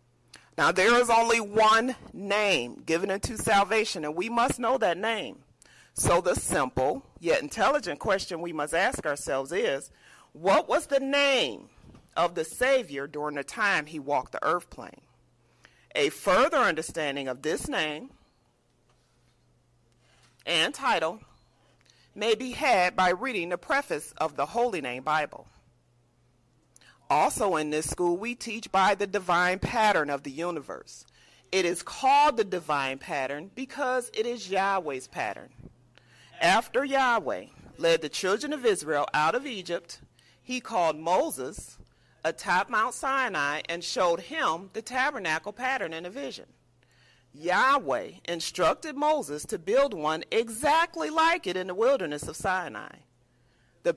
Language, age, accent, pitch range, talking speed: English, 40-59, American, 150-250 Hz, 140 wpm